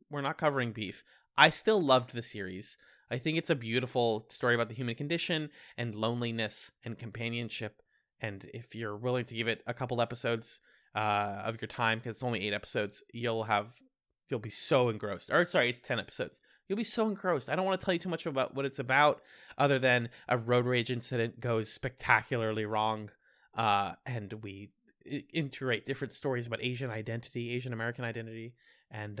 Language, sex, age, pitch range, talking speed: English, male, 20-39, 115-150 Hz, 185 wpm